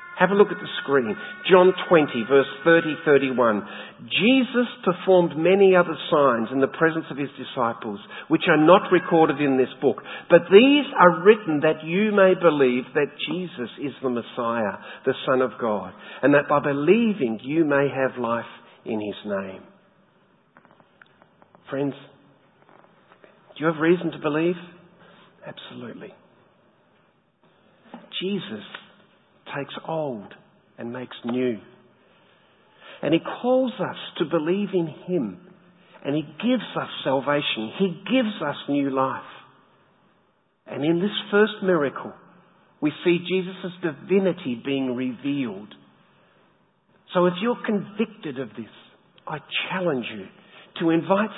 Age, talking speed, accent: 50-69, 130 wpm, Australian